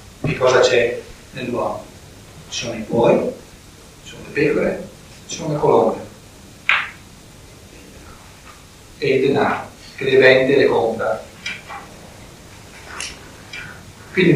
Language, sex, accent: Italian, male, native